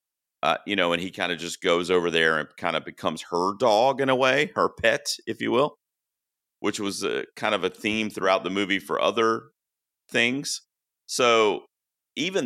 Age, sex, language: 40-59, male, English